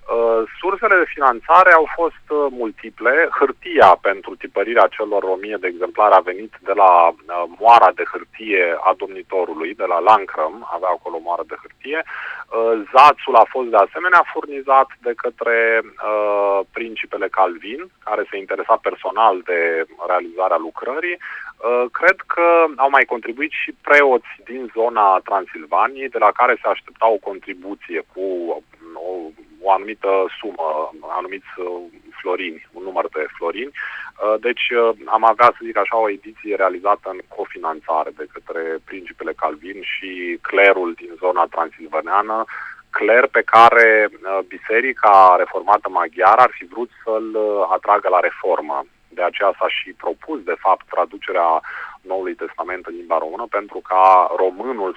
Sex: male